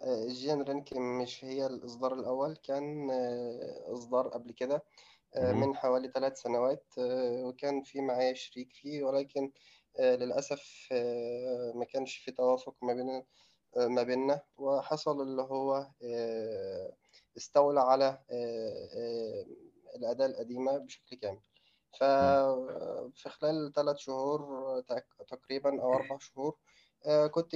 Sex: male